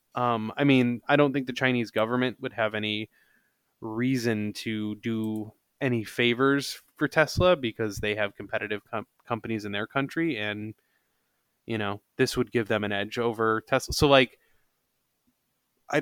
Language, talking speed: English, 155 wpm